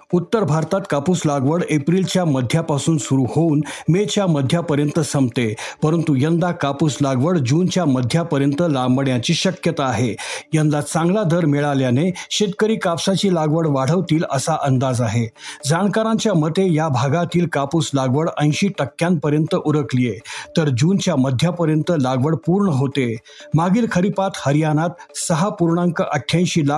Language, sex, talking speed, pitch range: Marathi, male, 55 wpm, 140-175 Hz